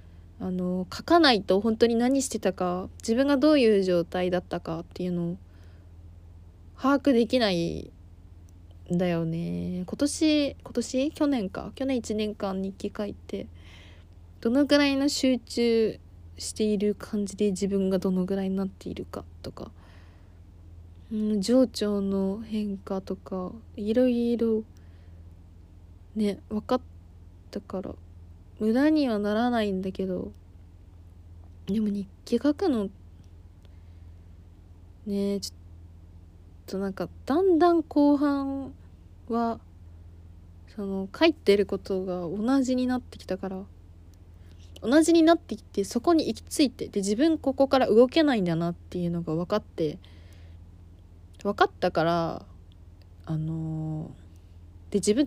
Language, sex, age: Japanese, female, 20-39